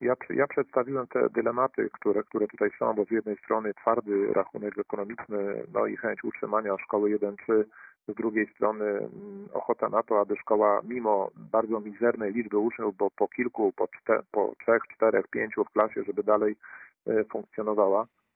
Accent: native